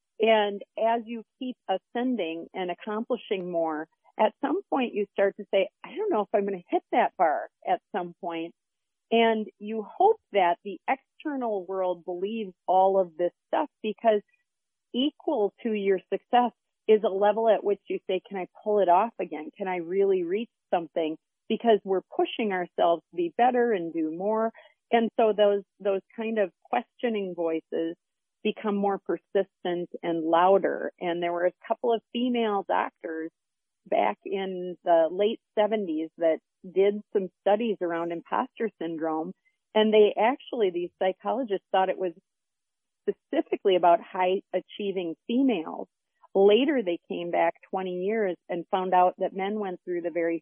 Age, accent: 40-59, American